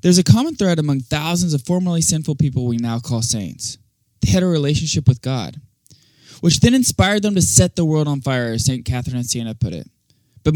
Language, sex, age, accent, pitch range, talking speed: English, male, 20-39, American, 120-155 Hz, 215 wpm